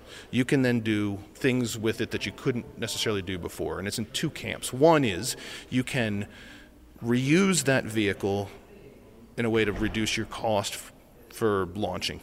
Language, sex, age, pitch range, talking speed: English, male, 40-59, 100-120 Hz, 165 wpm